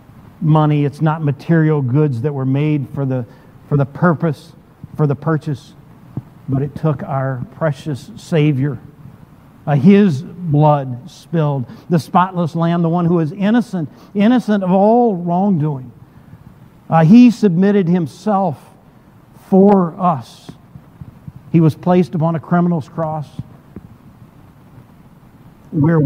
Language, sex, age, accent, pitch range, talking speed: English, male, 50-69, American, 135-175 Hz, 120 wpm